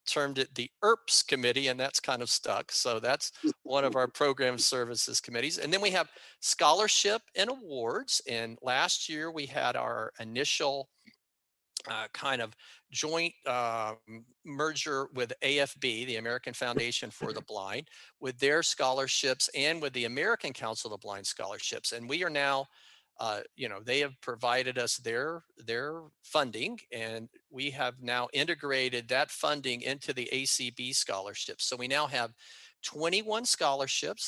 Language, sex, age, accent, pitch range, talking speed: English, male, 50-69, American, 115-140 Hz, 155 wpm